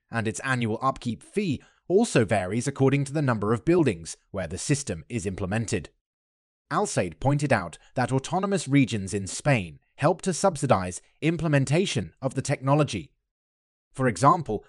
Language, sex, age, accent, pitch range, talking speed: English, male, 30-49, British, 110-150 Hz, 145 wpm